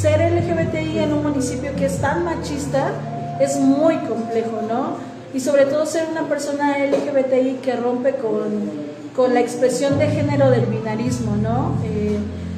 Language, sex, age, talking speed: Spanish, female, 30-49, 155 wpm